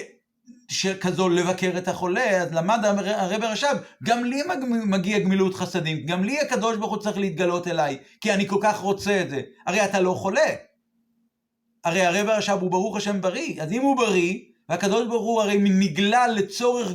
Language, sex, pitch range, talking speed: Hebrew, male, 180-230 Hz, 165 wpm